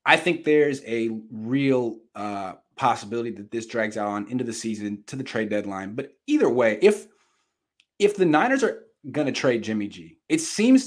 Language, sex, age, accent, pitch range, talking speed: English, male, 30-49, American, 115-180 Hz, 190 wpm